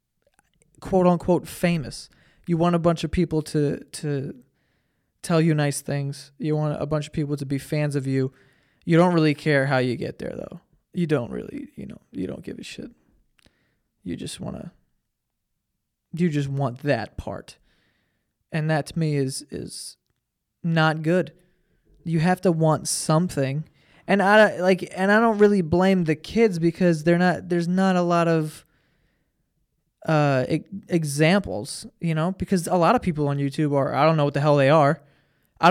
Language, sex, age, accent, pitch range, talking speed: English, male, 20-39, American, 140-170 Hz, 175 wpm